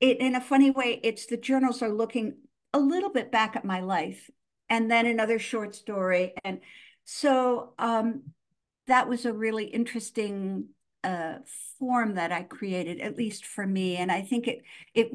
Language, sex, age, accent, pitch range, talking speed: English, female, 60-79, American, 200-255 Hz, 175 wpm